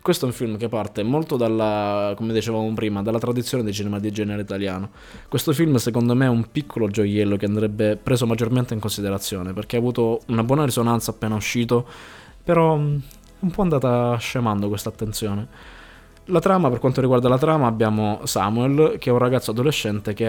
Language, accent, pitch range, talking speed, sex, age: Italian, native, 105-120 Hz, 185 wpm, male, 20-39